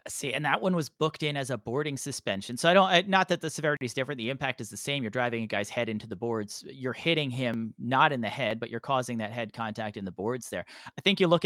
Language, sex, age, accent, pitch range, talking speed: English, male, 30-49, American, 125-165 Hz, 285 wpm